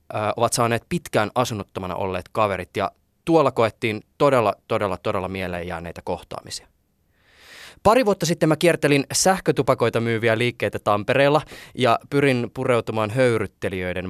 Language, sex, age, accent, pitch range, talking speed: Finnish, male, 20-39, native, 105-135 Hz, 120 wpm